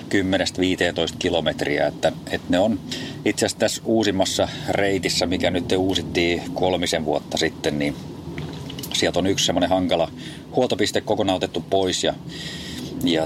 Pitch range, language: 85-100 Hz, Finnish